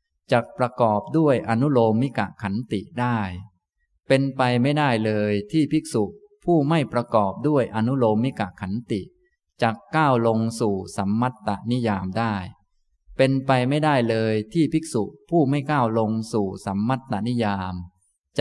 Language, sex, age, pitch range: Thai, male, 20-39, 105-135 Hz